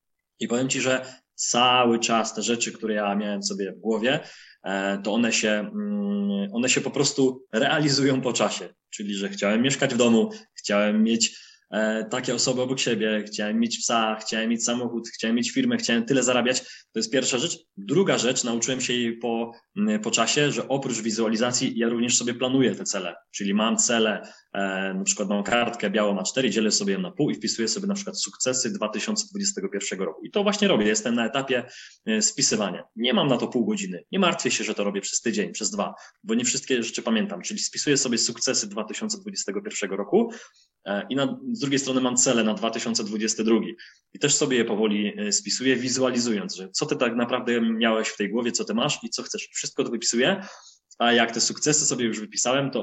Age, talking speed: 20-39, 190 wpm